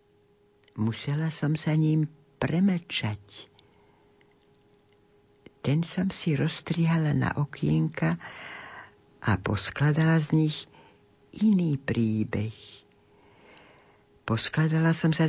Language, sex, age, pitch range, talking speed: Slovak, female, 60-79, 105-155 Hz, 80 wpm